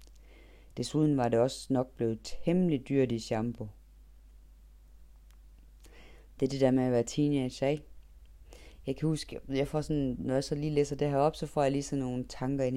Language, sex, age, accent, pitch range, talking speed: Danish, female, 30-49, native, 115-150 Hz, 195 wpm